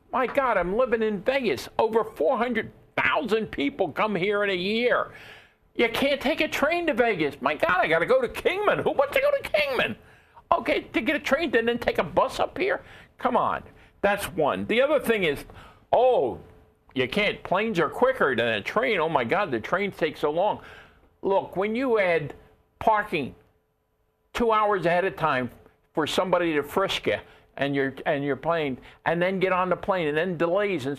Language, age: English, 50-69